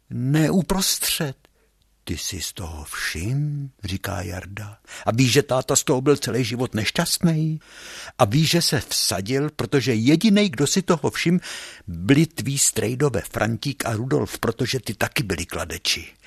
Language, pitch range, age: Czech, 95-140 Hz, 60-79